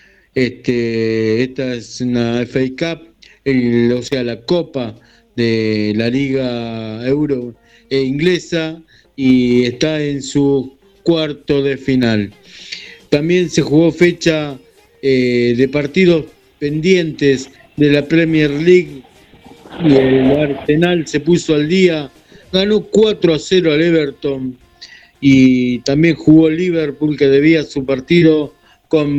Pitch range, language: 130-160 Hz, Spanish